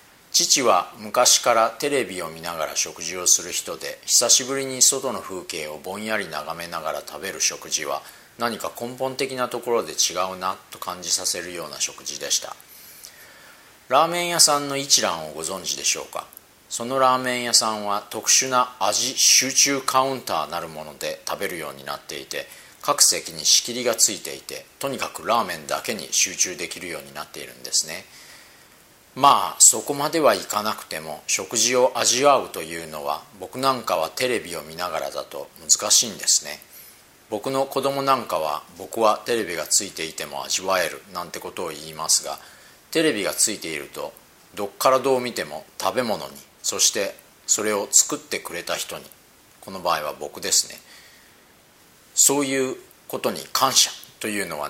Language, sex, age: Japanese, male, 40-59